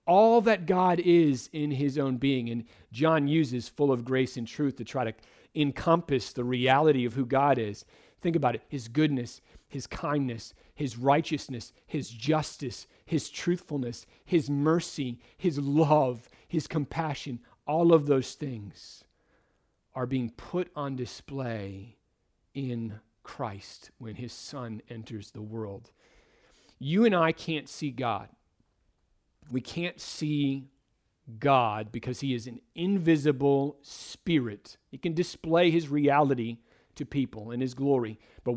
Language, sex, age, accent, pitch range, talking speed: English, male, 40-59, American, 120-160 Hz, 140 wpm